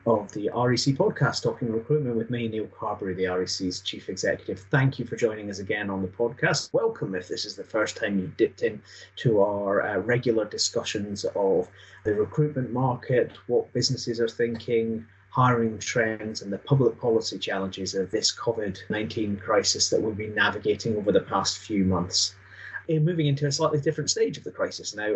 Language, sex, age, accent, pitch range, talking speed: English, male, 30-49, British, 100-140 Hz, 180 wpm